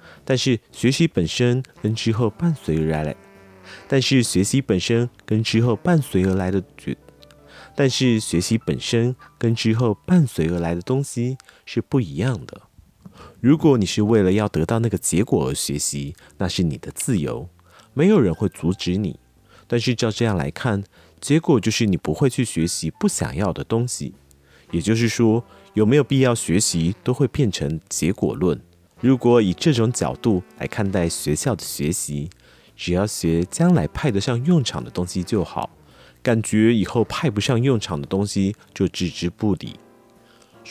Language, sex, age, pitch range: Chinese, male, 30-49, 90-125 Hz